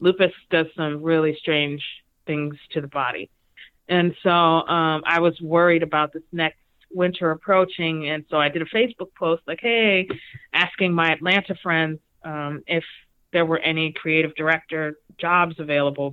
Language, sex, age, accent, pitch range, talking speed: English, female, 30-49, American, 150-175 Hz, 155 wpm